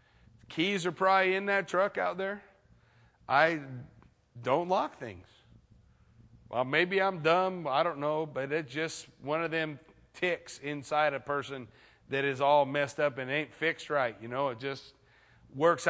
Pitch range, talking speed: 145-195 Hz, 160 wpm